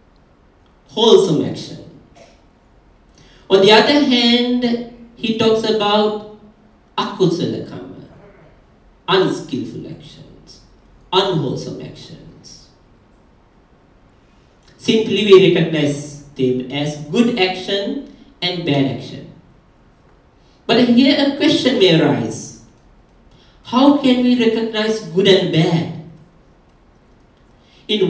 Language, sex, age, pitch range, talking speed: English, male, 50-69, 165-230 Hz, 80 wpm